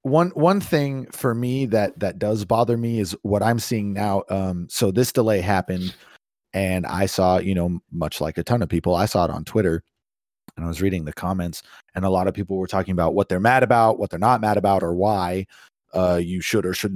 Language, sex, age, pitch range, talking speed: English, male, 30-49, 95-130 Hz, 235 wpm